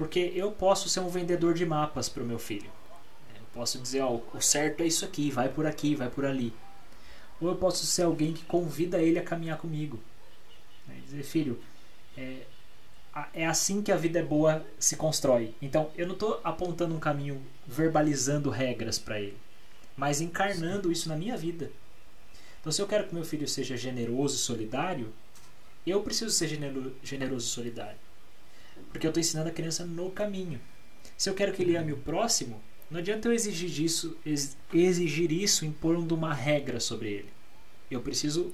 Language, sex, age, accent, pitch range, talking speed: Portuguese, male, 20-39, Brazilian, 135-175 Hz, 175 wpm